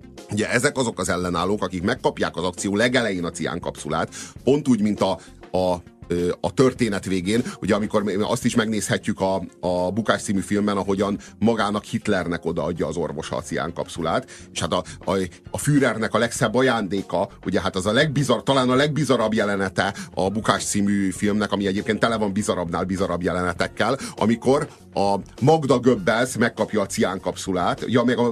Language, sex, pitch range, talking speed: Hungarian, male, 105-135 Hz, 165 wpm